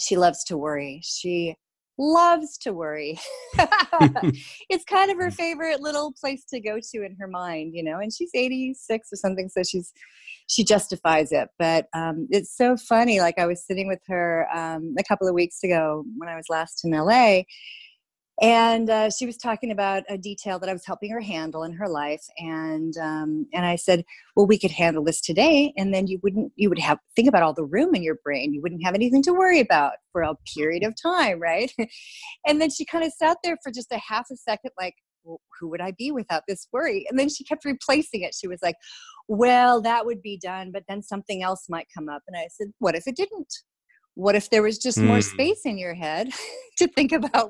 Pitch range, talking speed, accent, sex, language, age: 170-260 Hz, 220 wpm, American, female, English, 30-49